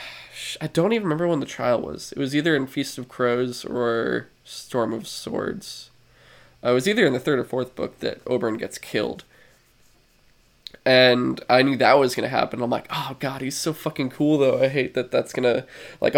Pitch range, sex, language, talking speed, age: 120-150 Hz, male, English, 210 wpm, 20-39